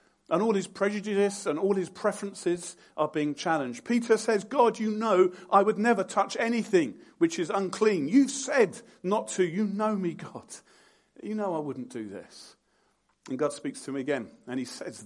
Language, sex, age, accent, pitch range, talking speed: English, male, 40-59, British, 185-260 Hz, 185 wpm